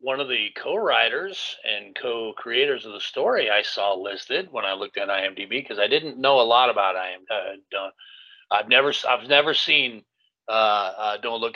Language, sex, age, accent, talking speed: English, male, 40-59, American, 175 wpm